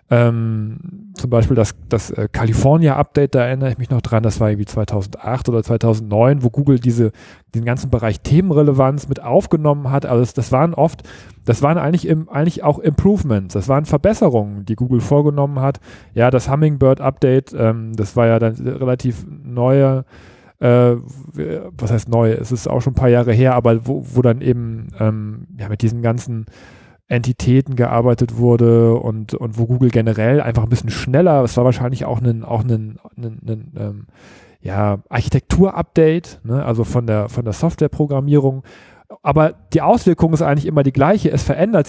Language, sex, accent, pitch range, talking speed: German, male, German, 115-145 Hz, 175 wpm